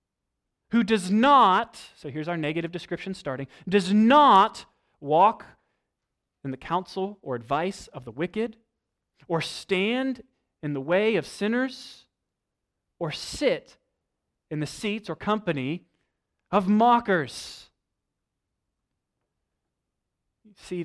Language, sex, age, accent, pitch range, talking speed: English, male, 30-49, American, 150-215 Hz, 105 wpm